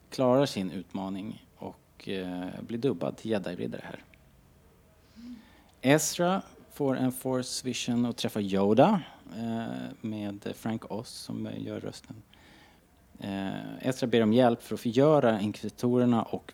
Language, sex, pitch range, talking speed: Swedish, male, 90-120 Hz, 125 wpm